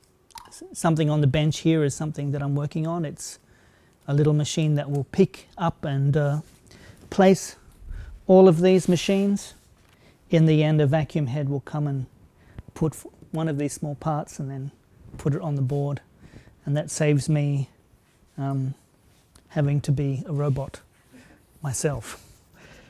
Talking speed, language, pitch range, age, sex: 155 wpm, German, 140-165 Hz, 40-59, male